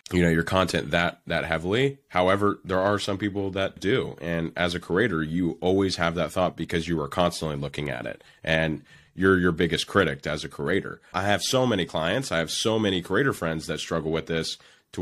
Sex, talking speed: male, 215 wpm